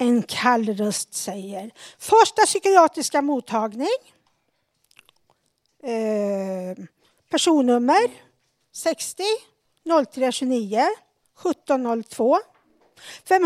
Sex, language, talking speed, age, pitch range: female, Swedish, 65 wpm, 50-69, 225-325 Hz